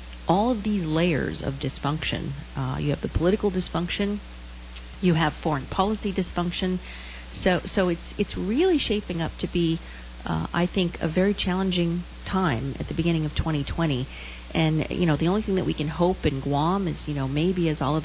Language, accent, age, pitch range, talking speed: English, American, 40-59, 130-170 Hz, 185 wpm